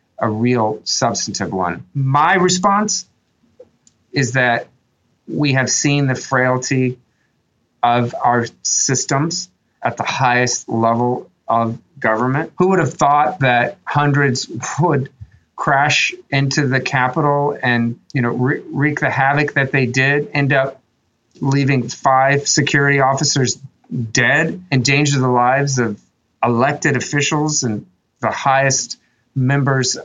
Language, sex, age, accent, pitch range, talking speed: English, male, 40-59, American, 125-150 Hz, 120 wpm